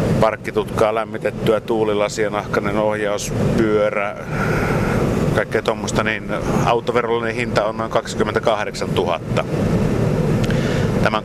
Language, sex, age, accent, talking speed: Finnish, male, 60-79, native, 80 wpm